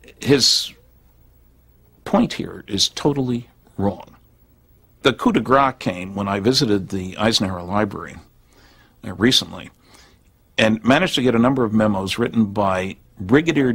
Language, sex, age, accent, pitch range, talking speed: English, male, 60-79, American, 95-120 Hz, 125 wpm